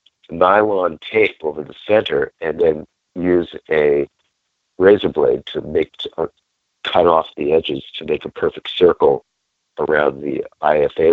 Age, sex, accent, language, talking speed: 60-79, male, American, English, 135 wpm